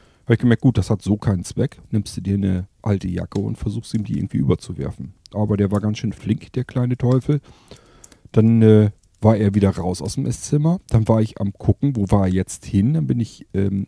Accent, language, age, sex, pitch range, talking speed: German, German, 40-59, male, 95-115 Hz, 225 wpm